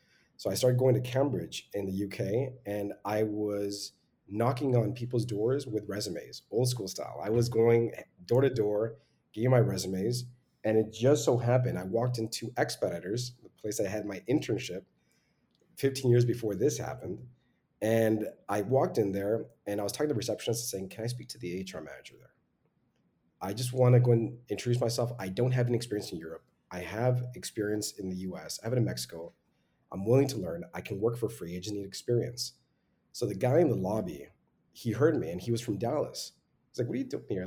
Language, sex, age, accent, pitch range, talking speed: English, male, 30-49, American, 100-125 Hz, 210 wpm